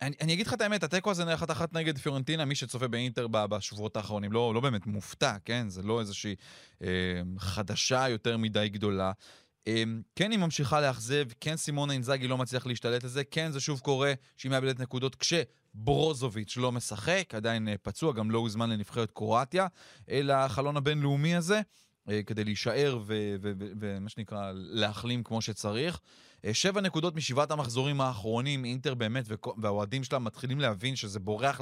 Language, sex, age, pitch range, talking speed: Hebrew, male, 20-39, 110-150 Hz, 175 wpm